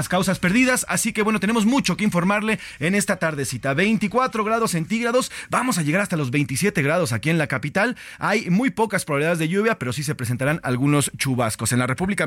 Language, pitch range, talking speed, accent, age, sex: Spanish, 140-195 Hz, 200 wpm, Mexican, 30-49, male